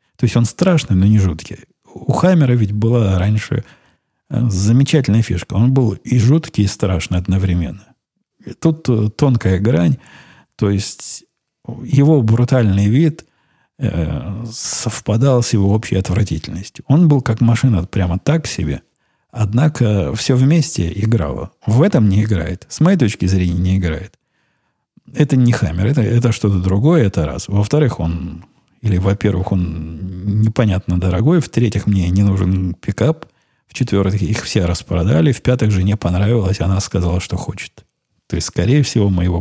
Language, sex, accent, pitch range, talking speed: Russian, male, native, 95-120 Hz, 145 wpm